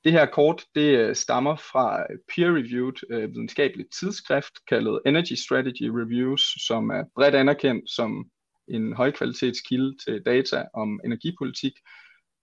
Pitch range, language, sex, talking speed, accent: 120-160 Hz, Danish, male, 115 wpm, native